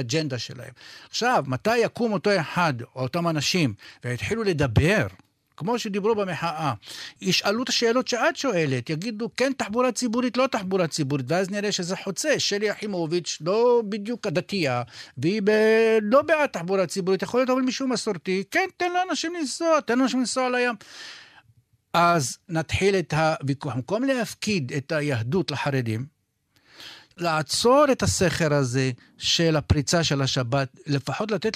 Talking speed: 140 wpm